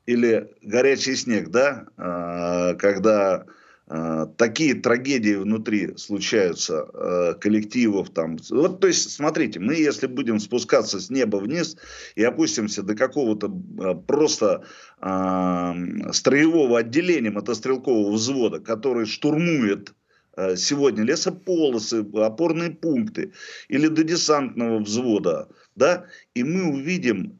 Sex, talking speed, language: male, 100 wpm, Russian